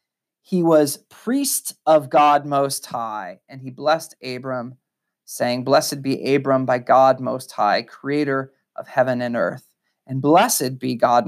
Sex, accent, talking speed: male, American, 150 wpm